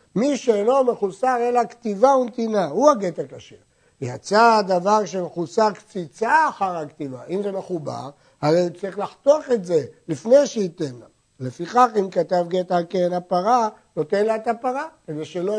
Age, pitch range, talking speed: 60-79, 165-225 Hz, 150 wpm